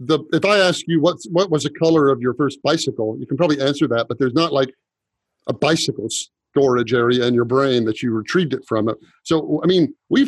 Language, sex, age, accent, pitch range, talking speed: English, male, 50-69, American, 125-165 Hz, 215 wpm